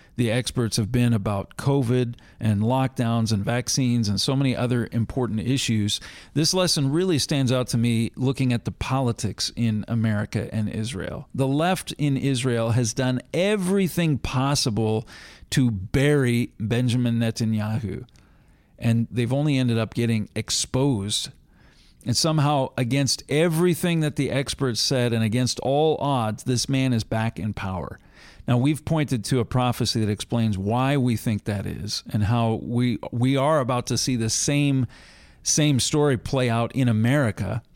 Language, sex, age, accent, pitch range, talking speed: English, male, 40-59, American, 115-140 Hz, 155 wpm